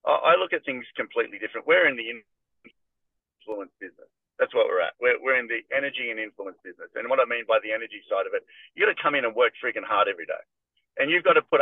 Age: 40-59